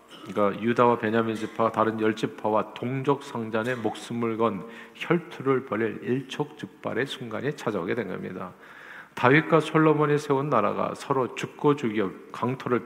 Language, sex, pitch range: Korean, male, 105-130 Hz